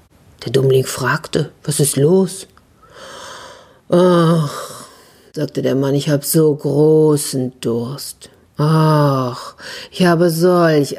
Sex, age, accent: female, 50-69, German